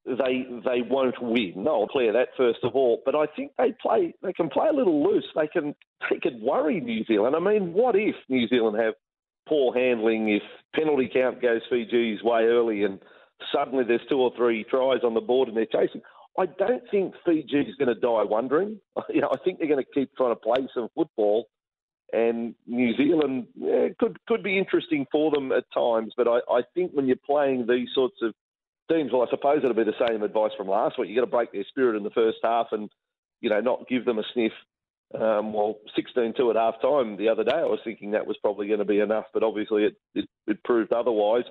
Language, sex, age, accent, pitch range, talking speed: English, male, 40-59, Australian, 110-145 Hz, 225 wpm